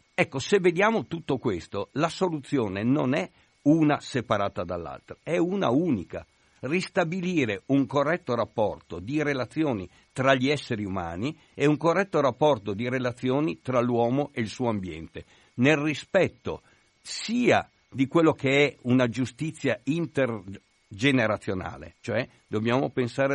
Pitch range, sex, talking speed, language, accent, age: 115-155 Hz, male, 130 wpm, Italian, native, 50-69